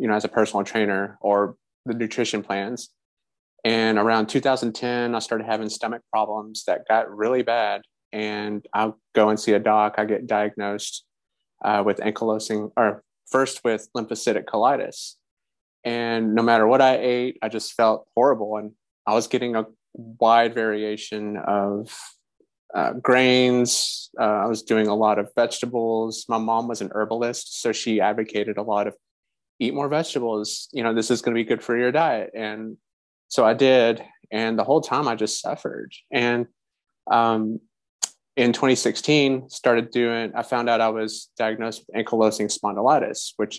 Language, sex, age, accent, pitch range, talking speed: English, male, 30-49, American, 105-120 Hz, 165 wpm